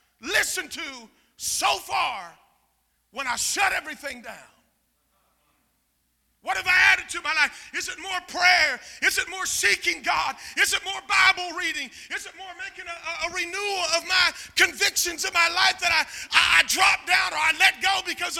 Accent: American